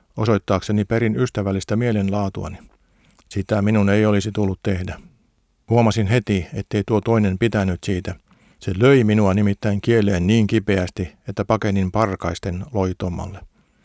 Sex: male